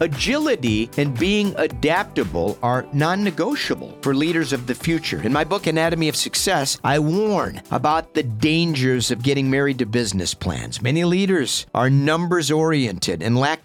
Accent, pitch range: American, 125-165 Hz